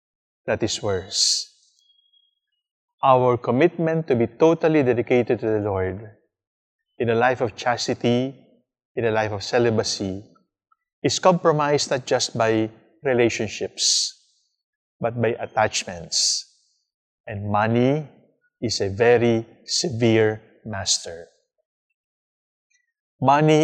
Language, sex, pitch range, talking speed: English, male, 110-150 Hz, 100 wpm